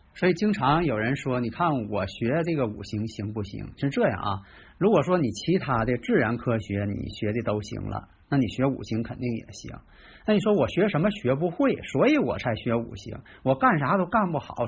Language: Chinese